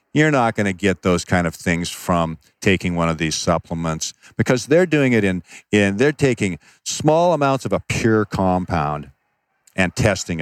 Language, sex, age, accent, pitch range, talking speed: English, male, 50-69, American, 95-130 Hz, 180 wpm